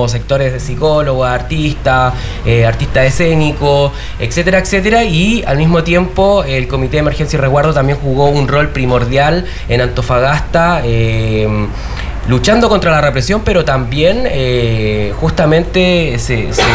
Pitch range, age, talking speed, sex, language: 125-160 Hz, 20-39, 130 wpm, male, Spanish